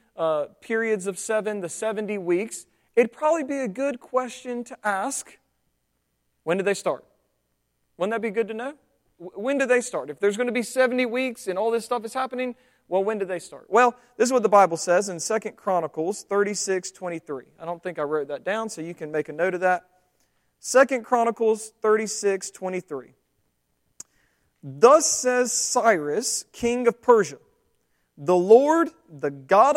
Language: English